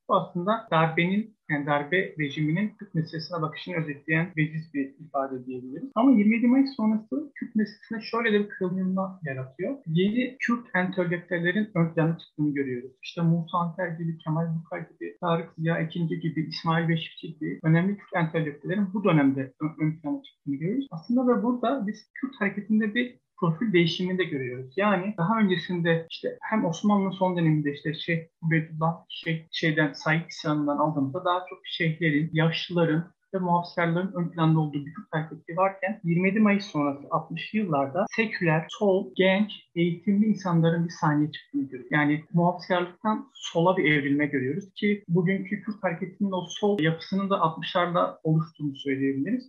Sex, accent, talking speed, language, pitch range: male, native, 150 wpm, Turkish, 155-200 Hz